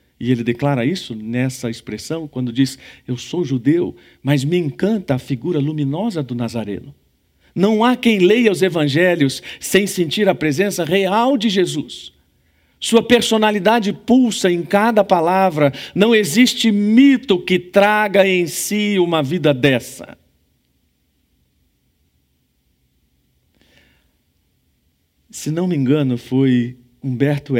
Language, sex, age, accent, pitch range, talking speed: Portuguese, male, 50-69, Brazilian, 110-170 Hz, 115 wpm